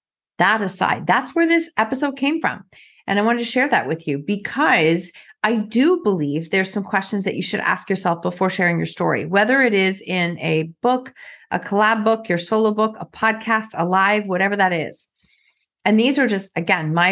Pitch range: 190-245 Hz